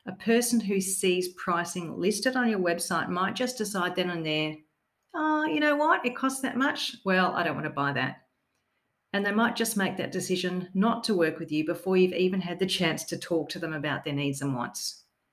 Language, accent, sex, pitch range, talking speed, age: English, Australian, female, 160-200 Hz, 225 wpm, 40-59